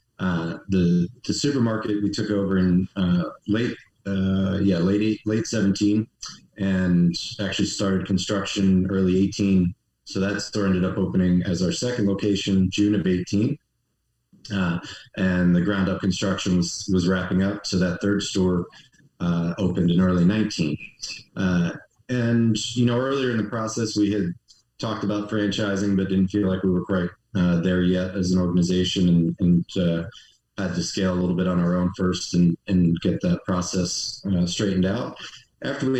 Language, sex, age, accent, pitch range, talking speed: English, male, 30-49, American, 90-105 Hz, 170 wpm